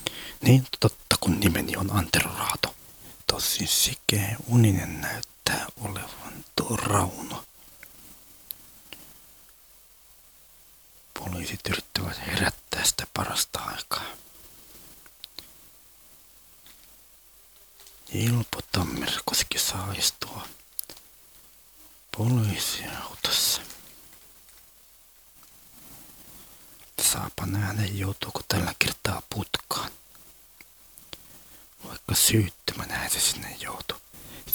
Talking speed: 65 wpm